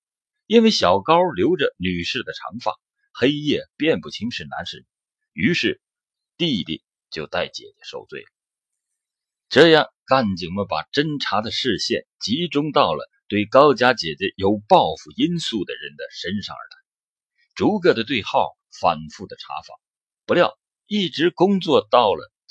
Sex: male